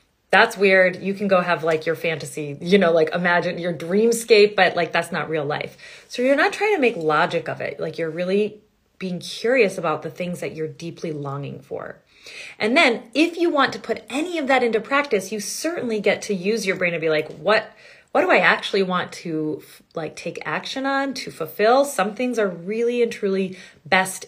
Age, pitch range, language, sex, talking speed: 30-49, 175-250 Hz, English, female, 210 wpm